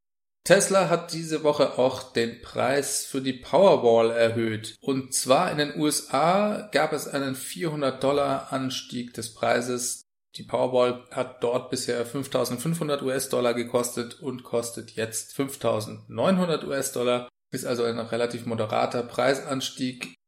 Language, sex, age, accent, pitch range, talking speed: German, male, 30-49, German, 120-140 Hz, 125 wpm